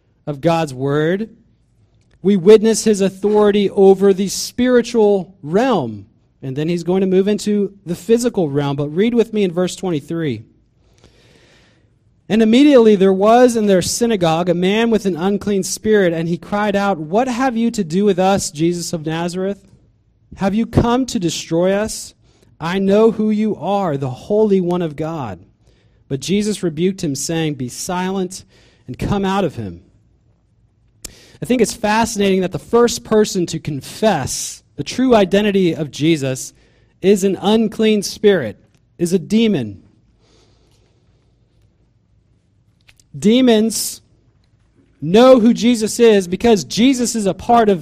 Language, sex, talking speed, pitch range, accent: English, male, 145 wpm, 135-210 Hz, American